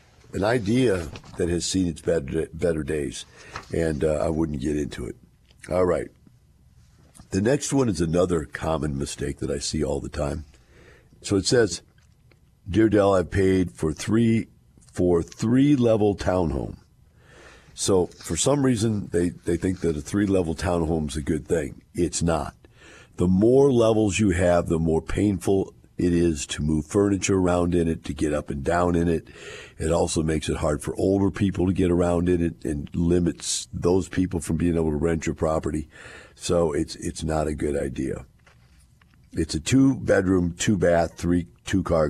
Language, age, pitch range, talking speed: English, 50-69, 80-95 Hz, 175 wpm